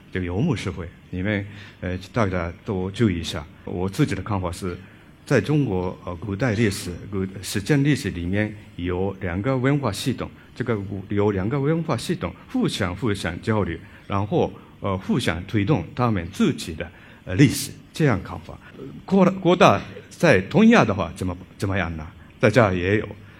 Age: 50-69